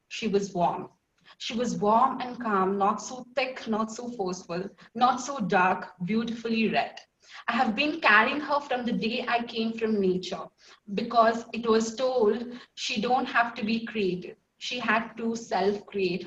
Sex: female